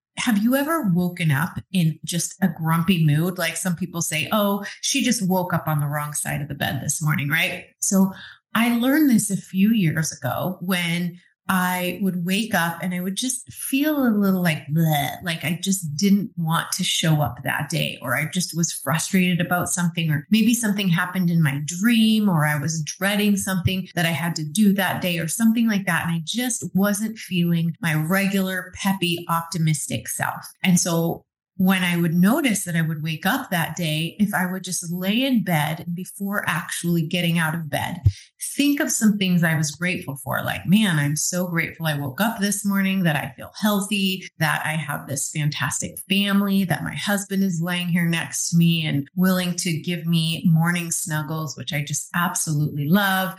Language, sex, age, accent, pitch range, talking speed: English, female, 30-49, American, 160-200 Hz, 195 wpm